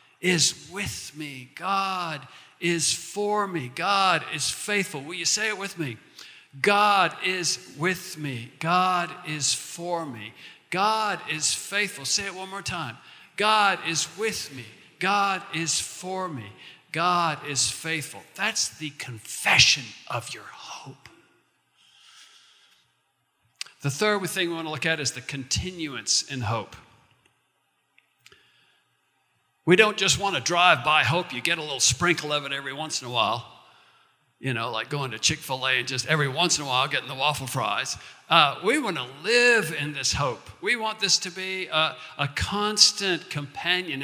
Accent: American